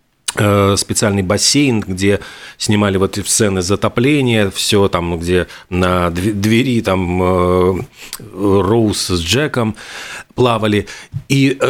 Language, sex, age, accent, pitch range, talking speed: Russian, male, 40-59, native, 100-120 Hz, 95 wpm